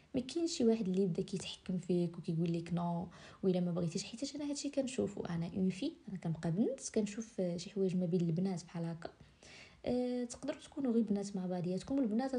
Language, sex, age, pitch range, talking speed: Arabic, female, 20-39, 185-230 Hz, 200 wpm